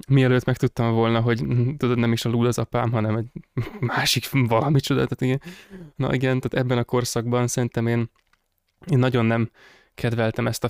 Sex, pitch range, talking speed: male, 115-130 Hz, 175 wpm